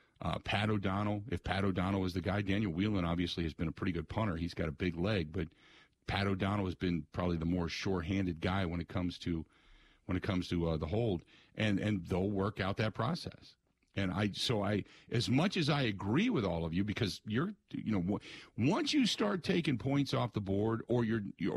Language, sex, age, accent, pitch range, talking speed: English, male, 50-69, American, 90-115 Hz, 215 wpm